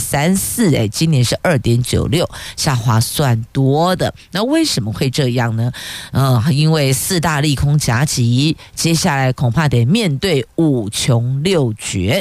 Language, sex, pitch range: Chinese, female, 120-165 Hz